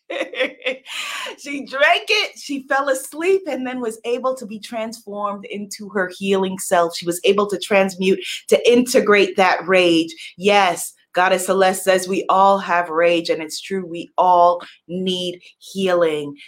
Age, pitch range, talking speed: 30-49, 175-215 Hz, 150 wpm